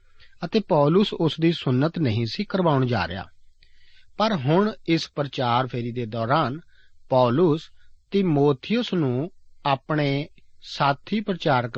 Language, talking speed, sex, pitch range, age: Punjabi, 115 wpm, male, 115-165 Hz, 40-59